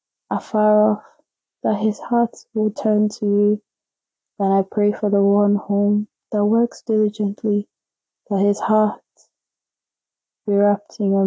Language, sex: English, female